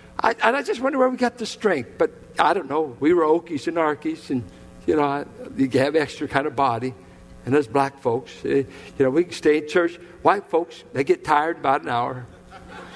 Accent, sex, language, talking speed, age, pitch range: American, male, English, 220 wpm, 60-79, 160-255 Hz